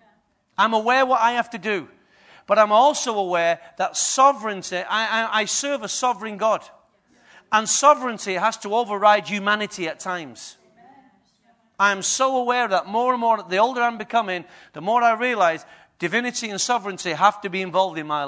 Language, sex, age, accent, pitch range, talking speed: English, male, 40-59, British, 170-230 Hz, 165 wpm